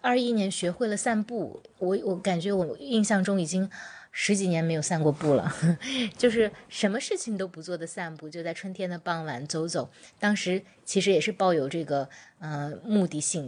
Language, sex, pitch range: Chinese, female, 165-195 Hz